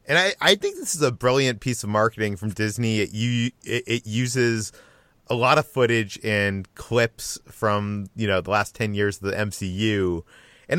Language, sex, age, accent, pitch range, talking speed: English, male, 30-49, American, 105-130 Hz, 195 wpm